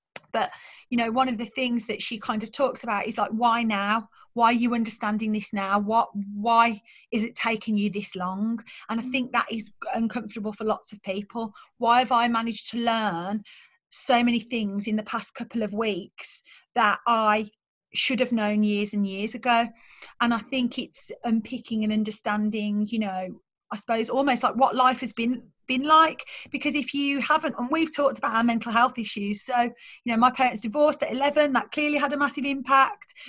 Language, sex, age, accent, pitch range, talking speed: English, female, 30-49, British, 220-270 Hz, 200 wpm